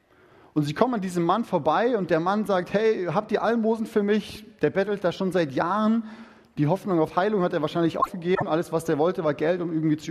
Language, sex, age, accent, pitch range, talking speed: German, male, 30-49, German, 155-200 Hz, 235 wpm